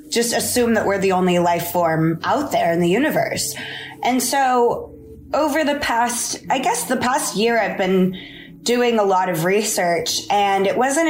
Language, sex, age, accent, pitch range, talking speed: English, female, 20-39, American, 180-240 Hz, 180 wpm